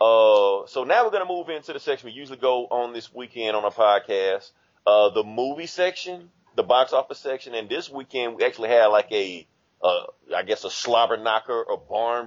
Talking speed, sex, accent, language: 210 wpm, male, American, English